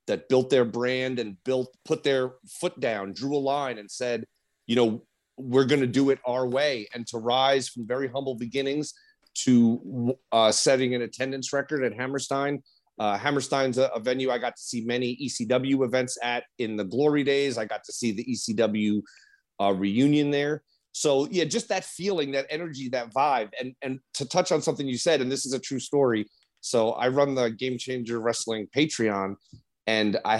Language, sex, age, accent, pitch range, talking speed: English, male, 30-49, American, 120-140 Hz, 190 wpm